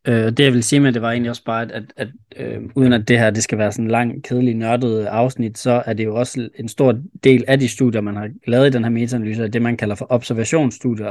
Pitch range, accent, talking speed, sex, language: 110-130 Hz, native, 275 wpm, male, Danish